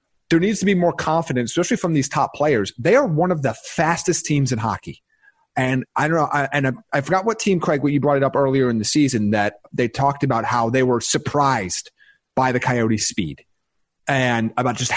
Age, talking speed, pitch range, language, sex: 30-49, 215 wpm, 130-175 Hz, English, male